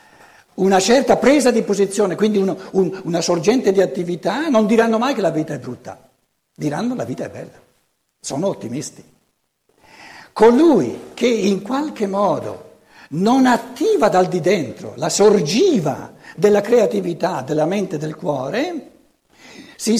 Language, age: Italian, 60-79